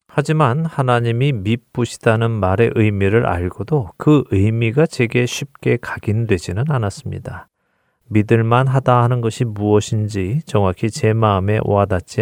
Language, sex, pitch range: Korean, male, 100-130 Hz